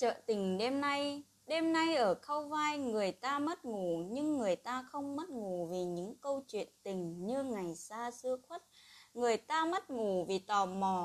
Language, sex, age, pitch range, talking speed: Vietnamese, female, 20-39, 190-285 Hz, 195 wpm